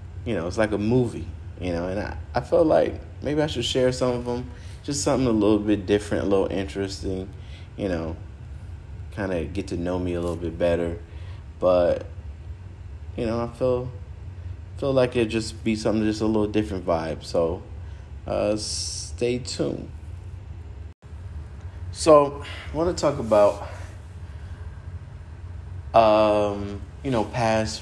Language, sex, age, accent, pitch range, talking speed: English, male, 30-49, American, 85-100 Hz, 155 wpm